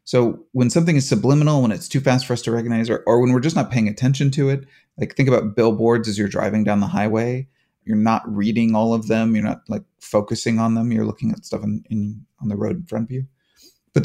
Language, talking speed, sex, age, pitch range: English, 245 wpm, male, 30-49, 110-130 Hz